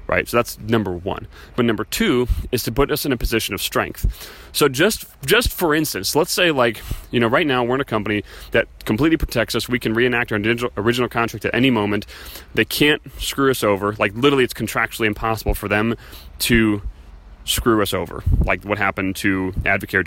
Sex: male